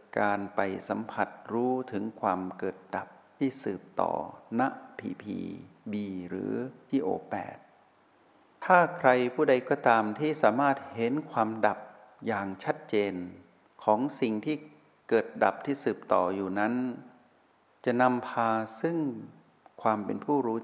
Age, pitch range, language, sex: 60-79, 100-135 Hz, Thai, male